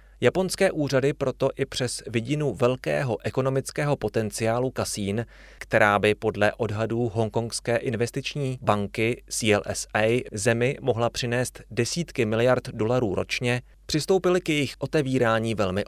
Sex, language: male, Czech